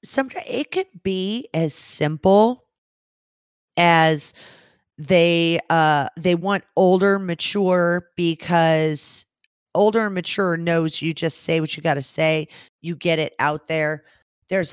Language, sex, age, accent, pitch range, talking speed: English, female, 40-59, American, 145-185 Hz, 130 wpm